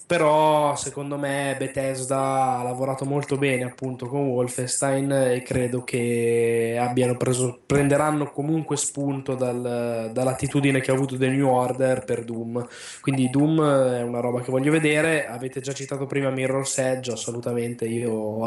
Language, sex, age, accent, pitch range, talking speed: Italian, male, 10-29, native, 120-140 Hz, 150 wpm